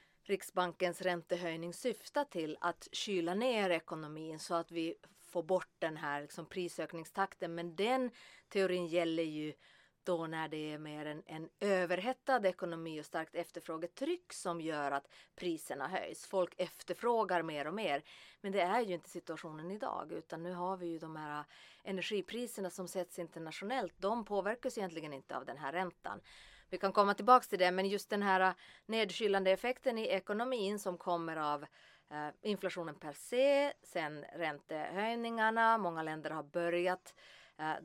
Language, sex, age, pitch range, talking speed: English, female, 30-49, 165-200 Hz, 155 wpm